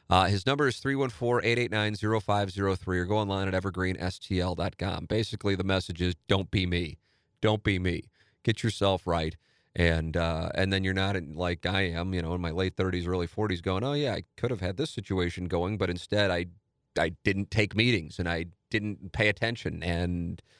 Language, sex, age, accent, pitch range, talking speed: English, male, 30-49, American, 90-110 Hz, 185 wpm